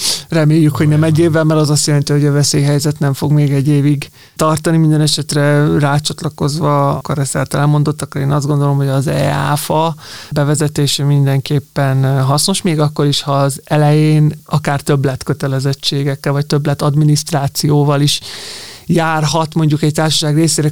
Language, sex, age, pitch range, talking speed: Hungarian, male, 20-39, 145-155 Hz, 155 wpm